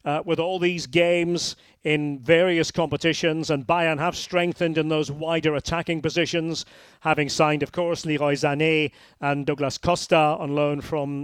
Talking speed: 155 wpm